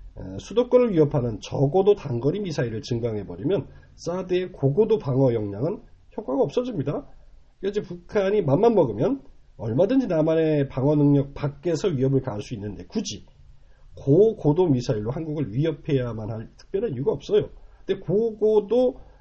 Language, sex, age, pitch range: Korean, male, 40-59, 110-175 Hz